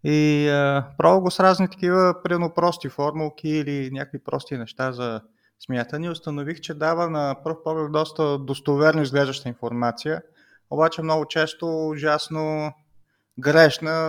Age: 30-49